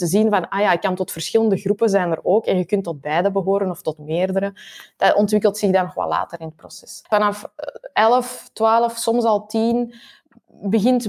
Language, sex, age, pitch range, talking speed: Dutch, female, 20-39, 180-225 Hz, 205 wpm